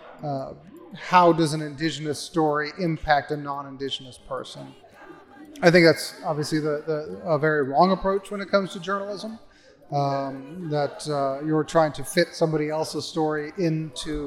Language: English